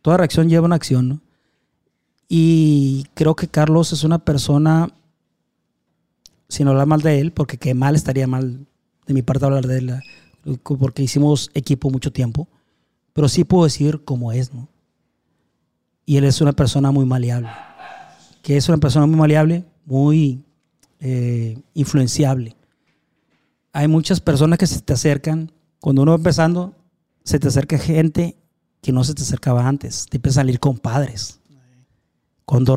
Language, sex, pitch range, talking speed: Spanish, male, 130-155 Hz, 155 wpm